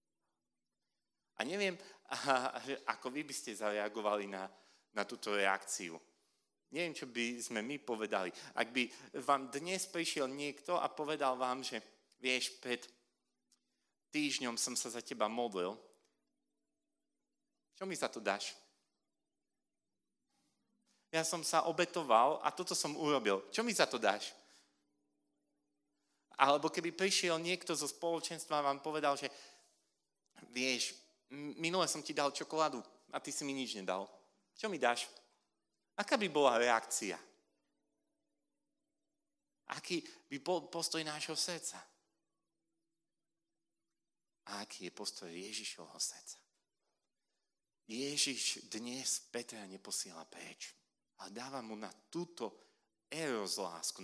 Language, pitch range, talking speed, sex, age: Slovak, 120-170 Hz, 115 wpm, male, 30-49